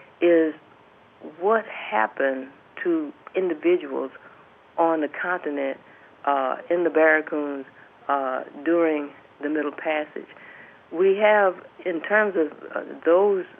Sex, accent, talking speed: female, American, 105 wpm